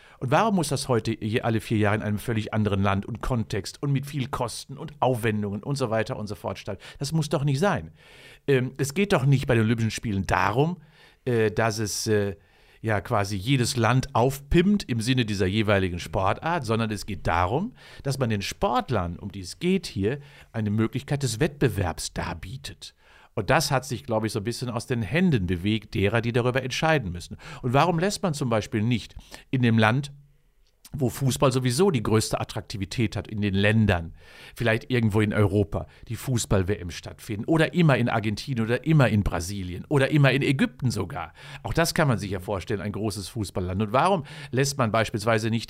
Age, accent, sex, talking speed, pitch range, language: 50-69, German, male, 195 wpm, 105-140 Hz, German